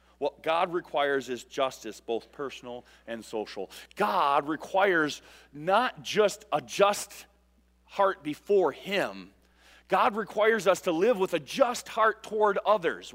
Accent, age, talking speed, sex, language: American, 40-59, 130 wpm, male, English